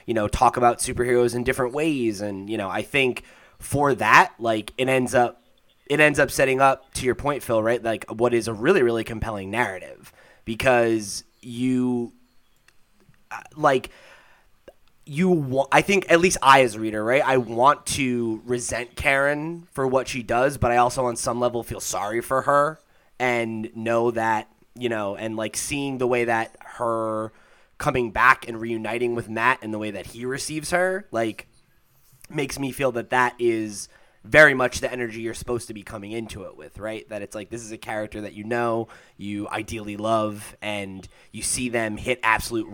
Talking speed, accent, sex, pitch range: 190 wpm, American, male, 110-125 Hz